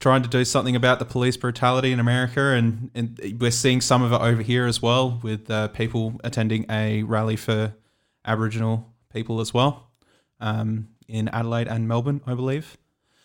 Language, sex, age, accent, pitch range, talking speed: English, male, 20-39, Australian, 110-120 Hz, 175 wpm